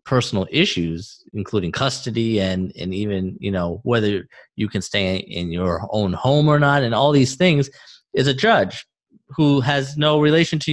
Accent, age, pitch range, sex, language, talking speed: American, 30-49, 105-150 Hz, male, English, 175 wpm